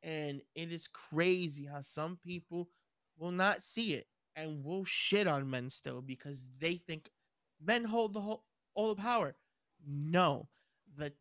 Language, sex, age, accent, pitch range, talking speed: English, male, 20-39, American, 150-215 Hz, 155 wpm